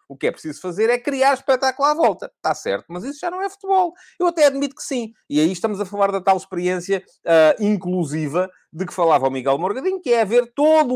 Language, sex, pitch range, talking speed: Portuguese, male, 145-240 Hz, 235 wpm